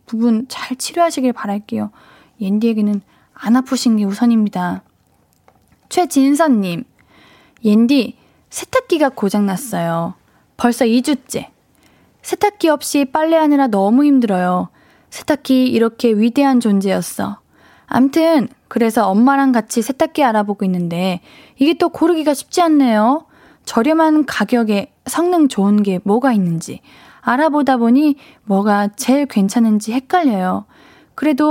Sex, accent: female, native